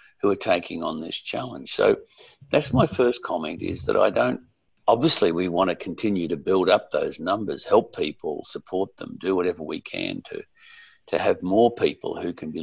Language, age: English, 60-79